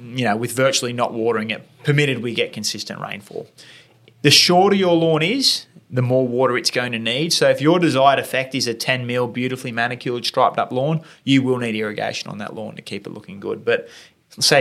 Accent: Australian